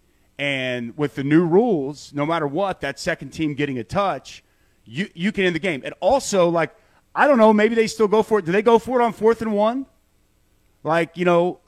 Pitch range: 155-220 Hz